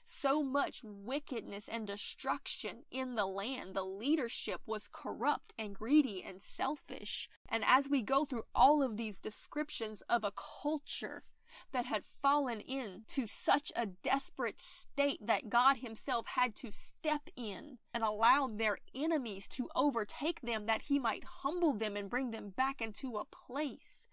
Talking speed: 155 wpm